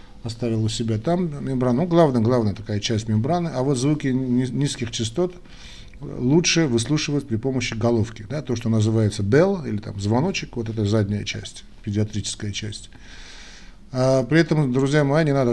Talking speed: 160 wpm